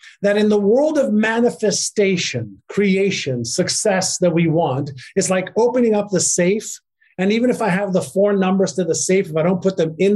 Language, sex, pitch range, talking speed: English, male, 170-225 Hz, 200 wpm